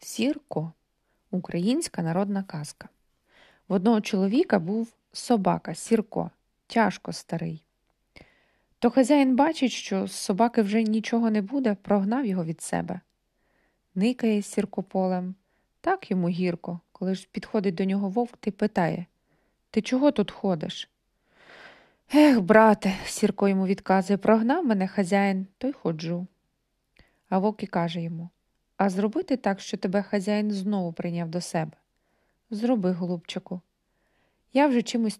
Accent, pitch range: native, 180-230 Hz